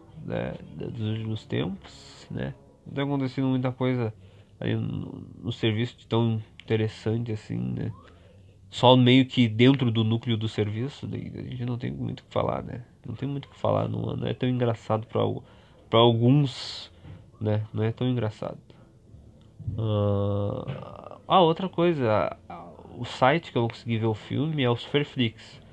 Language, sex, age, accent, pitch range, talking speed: Portuguese, male, 20-39, Brazilian, 110-135 Hz, 155 wpm